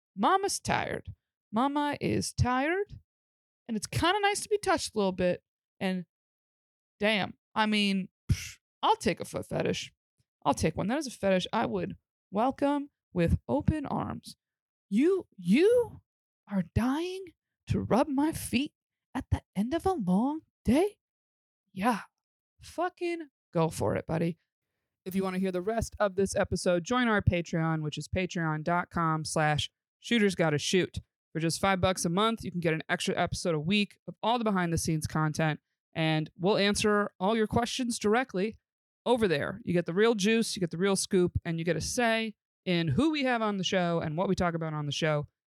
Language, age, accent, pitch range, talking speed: English, 20-39, American, 170-240 Hz, 180 wpm